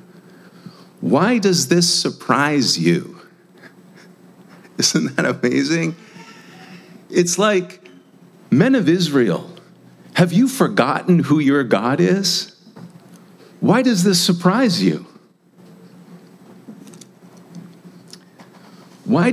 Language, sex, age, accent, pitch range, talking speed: English, male, 50-69, American, 140-185 Hz, 80 wpm